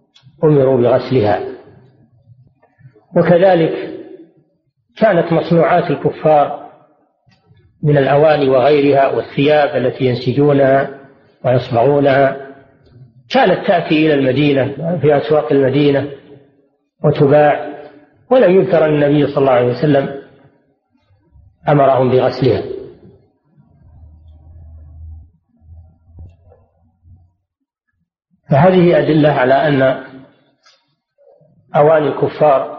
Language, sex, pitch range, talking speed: Arabic, male, 130-160 Hz, 65 wpm